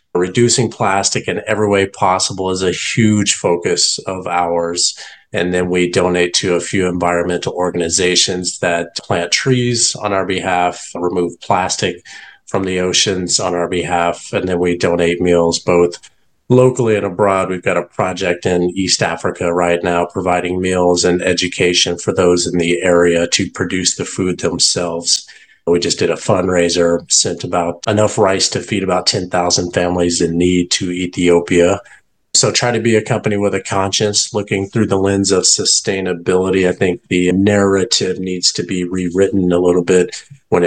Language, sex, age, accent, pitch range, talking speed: English, male, 30-49, American, 85-100 Hz, 165 wpm